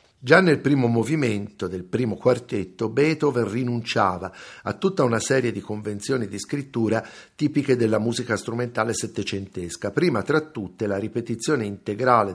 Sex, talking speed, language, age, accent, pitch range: male, 135 wpm, Italian, 50-69, native, 100-140 Hz